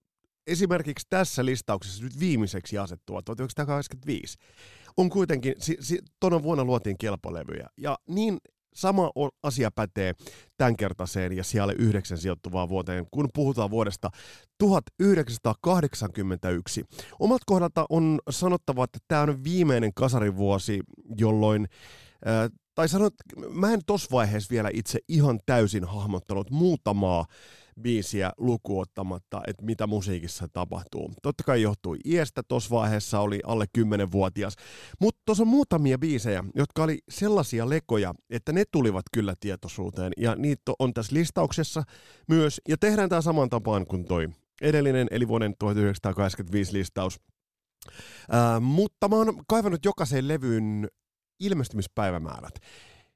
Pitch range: 100-155 Hz